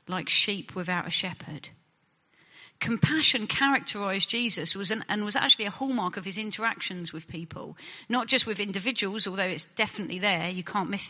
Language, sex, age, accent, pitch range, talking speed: English, female, 40-59, British, 175-235 Hz, 155 wpm